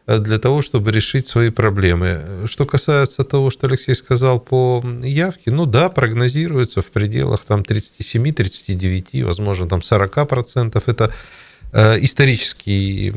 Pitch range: 100-130 Hz